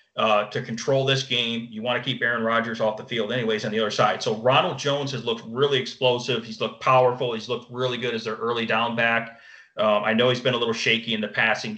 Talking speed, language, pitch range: 250 wpm, English, 110-125 Hz